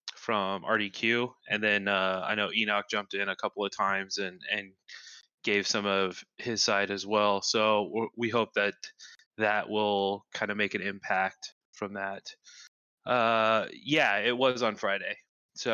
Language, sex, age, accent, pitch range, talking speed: English, male, 20-39, American, 100-110 Hz, 165 wpm